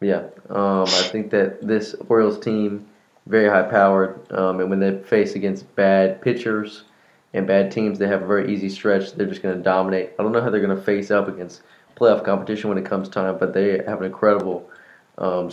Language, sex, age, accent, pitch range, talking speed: English, male, 20-39, American, 95-105 Hz, 210 wpm